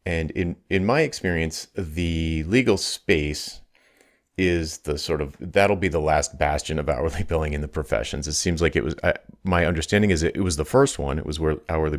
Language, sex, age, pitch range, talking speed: English, male, 30-49, 75-90 Hz, 200 wpm